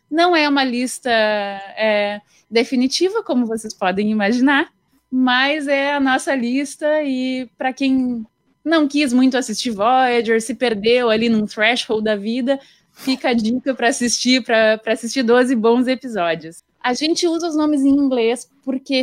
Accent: Brazilian